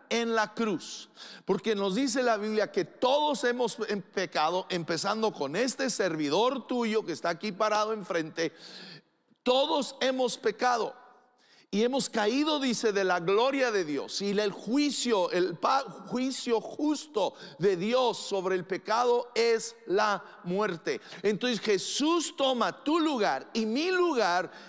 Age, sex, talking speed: 50-69, male, 135 wpm